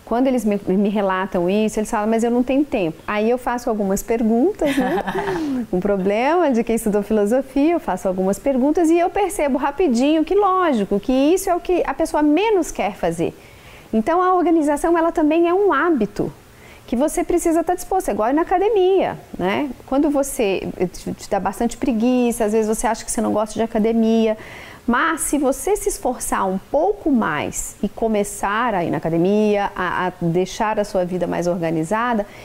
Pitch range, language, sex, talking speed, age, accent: 205-300 Hz, English, female, 190 wpm, 40-59, Brazilian